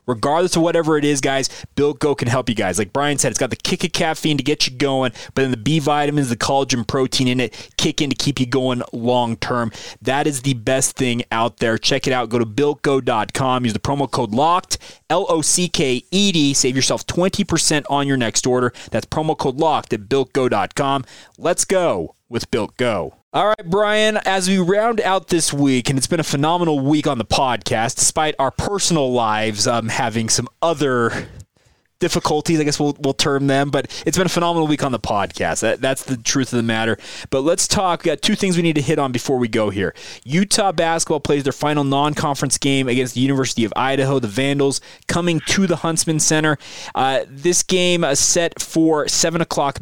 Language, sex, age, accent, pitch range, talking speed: English, male, 30-49, American, 125-160 Hz, 200 wpm